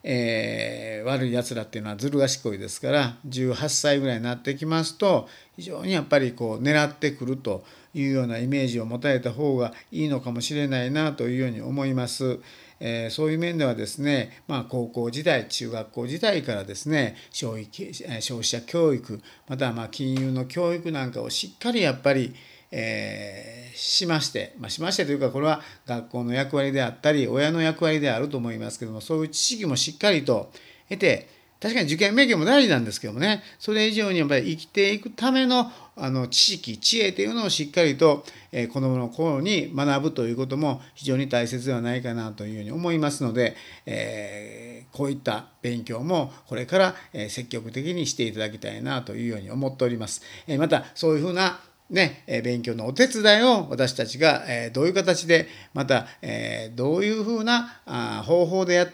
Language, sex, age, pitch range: Japanese, male, 50-69, 120-155 Hz